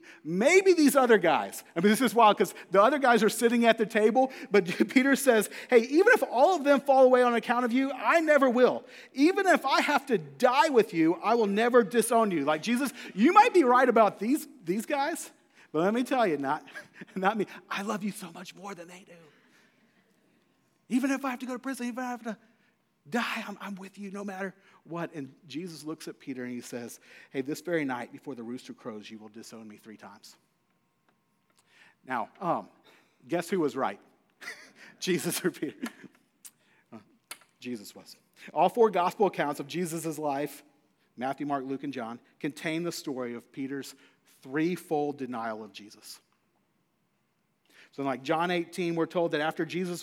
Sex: male